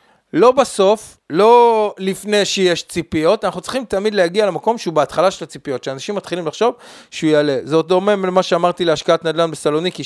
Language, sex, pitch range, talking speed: Hebrew, male, 140-185 Hz, 165 wpm